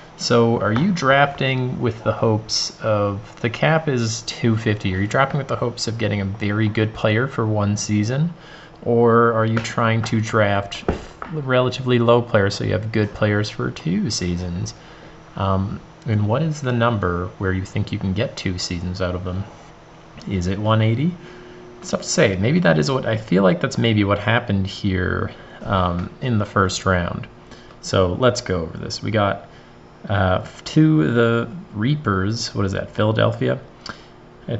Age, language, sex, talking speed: 30-49, English, male, 175 wpm